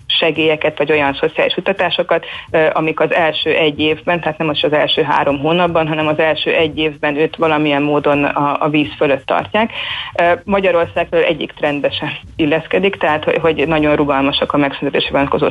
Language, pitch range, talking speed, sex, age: Hungarian, 145-165 Hz, 160 wpm, female, 30-49